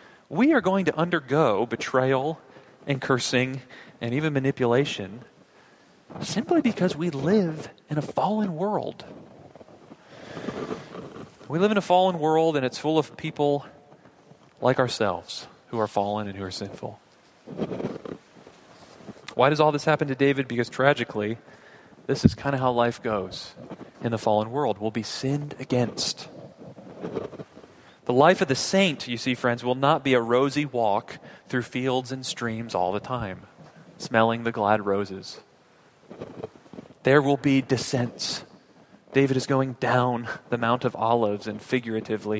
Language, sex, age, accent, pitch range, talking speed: English, male, 30-49, American, 115-155 Hz, 145 wpm